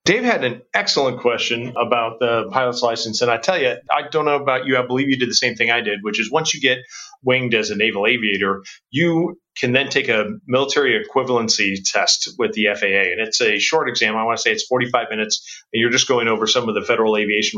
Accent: American